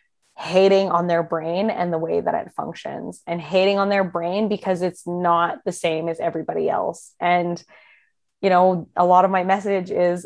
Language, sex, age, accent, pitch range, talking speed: English, female, 20-39, American, 170-195 Hz, 185 wpm